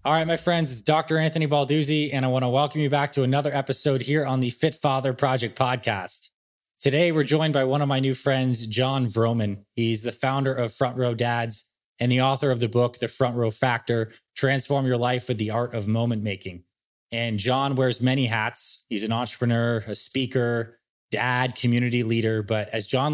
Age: 20-39